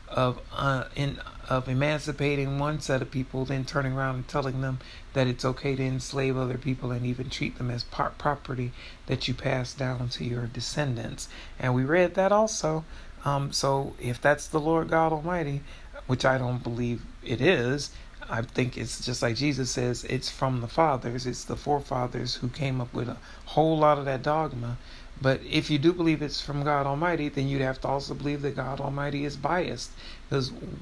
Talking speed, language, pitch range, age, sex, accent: 195 wpm, English, 125-145 Hz, 40-59, male, American